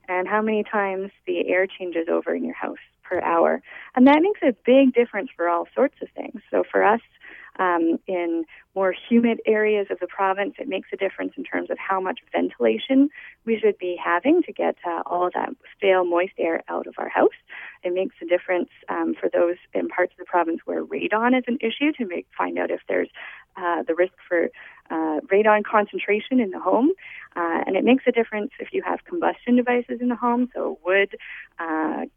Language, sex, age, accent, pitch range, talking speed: English, female, 30-49, American, 180-245 Hz, 205 wpm